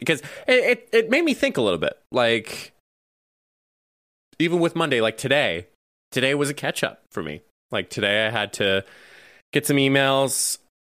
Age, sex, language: 20-39, male, English